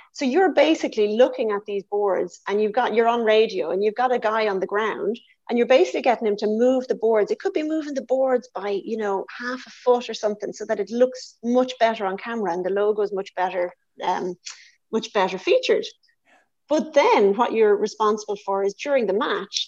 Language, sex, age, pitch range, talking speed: English, female, 30-49, 205-260 Hz, 220 wpm